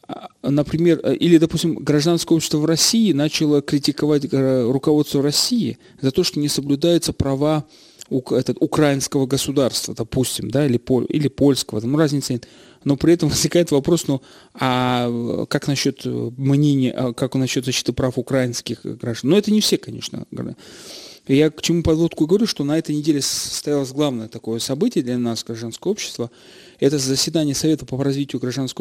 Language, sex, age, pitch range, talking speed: Russian, male, 30-49, 125-150 Hz, 150 wpm